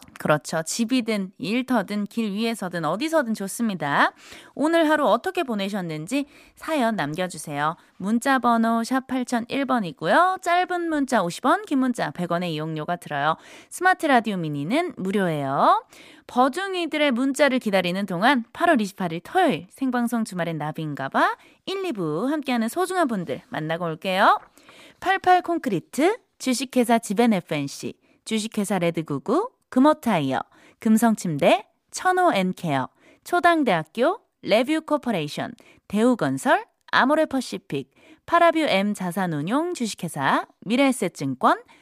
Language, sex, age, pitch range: Korean, female, 20-39, 190-315 Hz